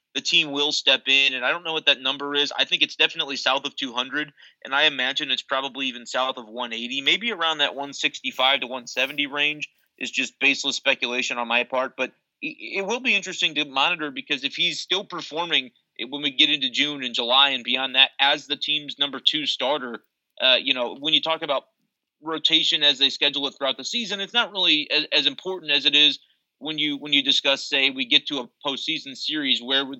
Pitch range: 130-155 Hz